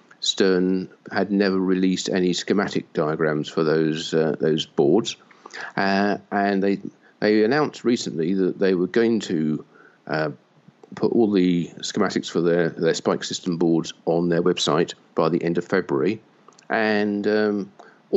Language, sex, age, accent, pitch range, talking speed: English, male, 50-69, British, 85-100 Hz, 145 wpm